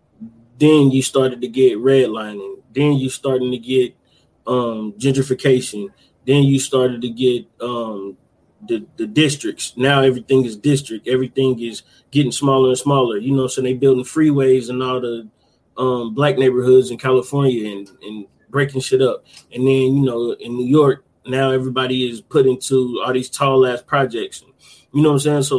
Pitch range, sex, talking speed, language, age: 125-135 Hz, male, 175 wpm, English, 20-39